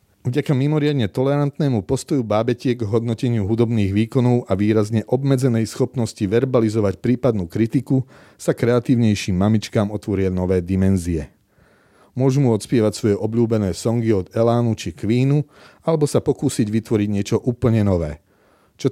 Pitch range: 100-130 Hz